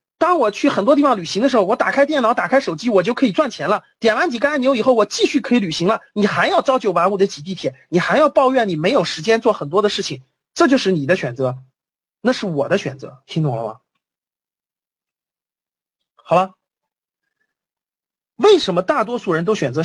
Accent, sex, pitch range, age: native, male, 185-290 Hz, 30-49